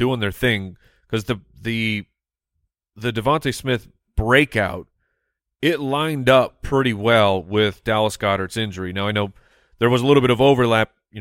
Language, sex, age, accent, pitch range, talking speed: English, male, 30-49, American, 100-130 Hz, 160 wpm